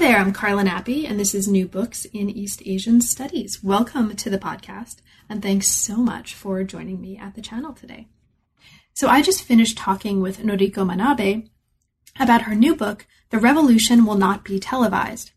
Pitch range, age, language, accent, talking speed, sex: 195-230 Hz, 30-49, English, American, 185 wpm, female